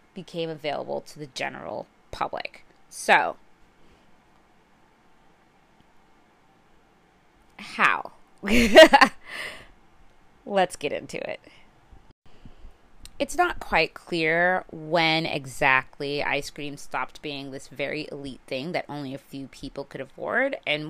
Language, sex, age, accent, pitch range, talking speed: English, female, 20-39, American, 150-225 Hz, 100 wpm